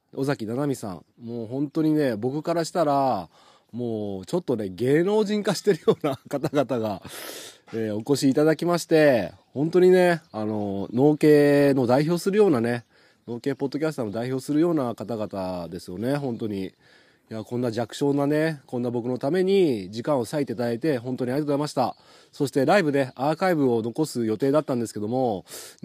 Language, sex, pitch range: Japanese, male, 120-160 Hz